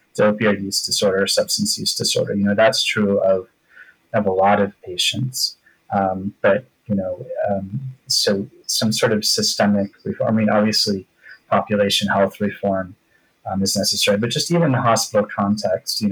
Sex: male